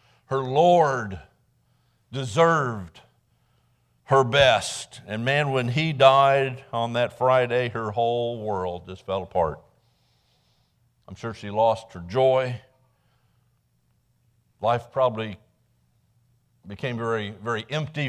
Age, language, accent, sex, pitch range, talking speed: 50-69, English, American, male, 115-135 Hz, 105 wpm